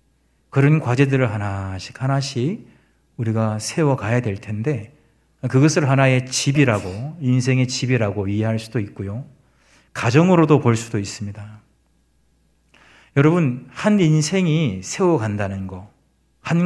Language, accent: Korean, native